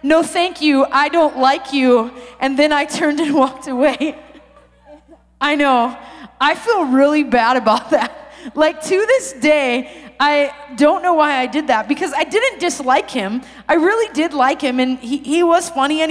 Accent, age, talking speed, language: American, 20-39, 185 wpm, English